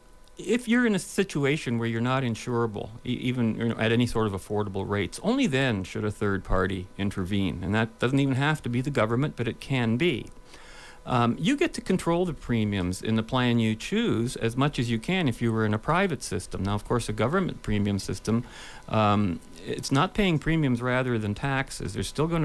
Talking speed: 210 wpm